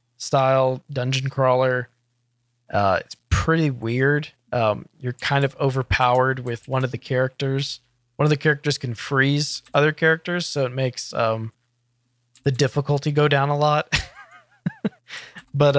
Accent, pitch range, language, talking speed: American, 120-140 Hz, English, 135 wpm